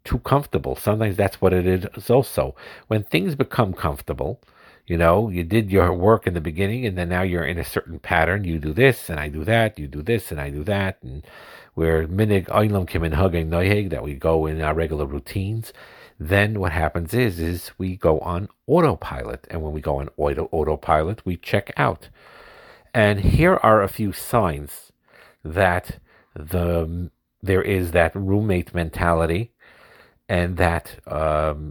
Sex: male